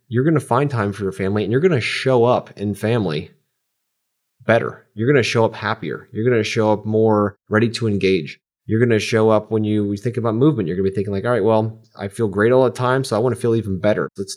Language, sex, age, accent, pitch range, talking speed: English, male, 30-49, American, 95-115 Hz, 275 wpm